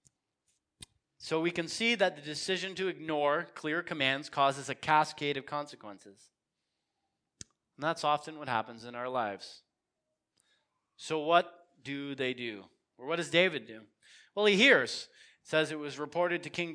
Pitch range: 150-195 Hz